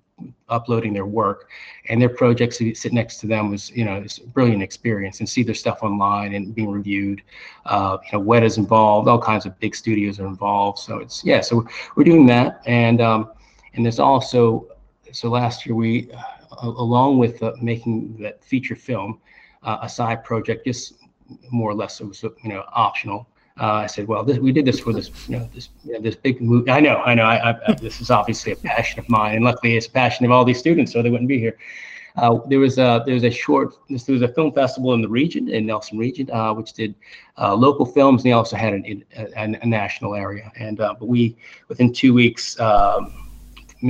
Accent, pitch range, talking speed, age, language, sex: American, 105-120 Hz, 225 wpm, 30-49, English, male